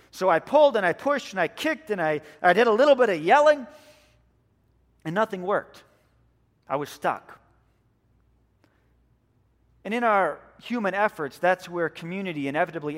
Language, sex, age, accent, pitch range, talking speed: English, male, 40-59, American, 155-215 Hz, 155 wpm